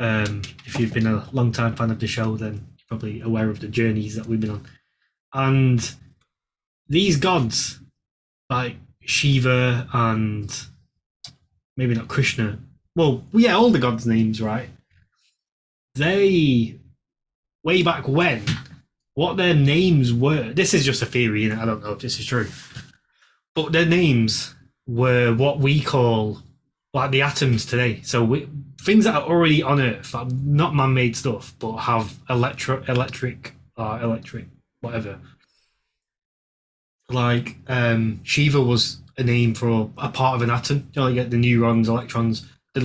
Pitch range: 115-135 Hz